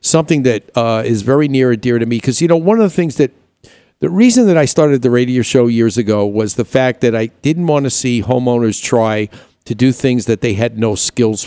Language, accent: English, American